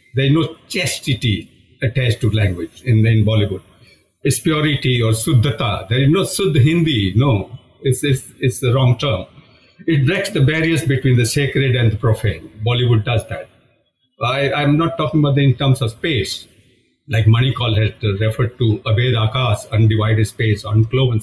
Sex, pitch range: male, 110-140 Hz